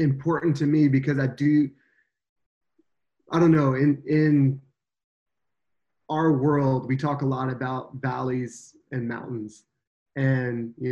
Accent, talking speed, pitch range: American, 125 wpm, 130-145 Hz